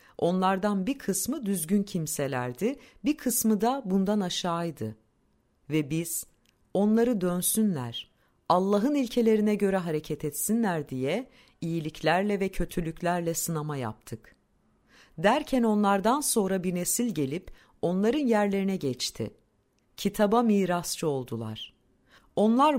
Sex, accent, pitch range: female, native, 150-215 Hz